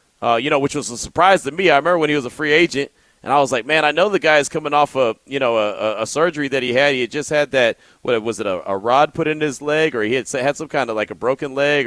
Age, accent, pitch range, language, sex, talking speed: 30-49, American, 120-150 Hz, English, male, 325 wpm